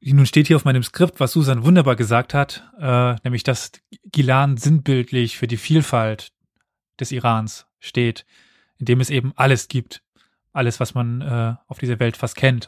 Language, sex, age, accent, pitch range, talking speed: German, male, 20-39, German, 115-145 Hz, 175 wpm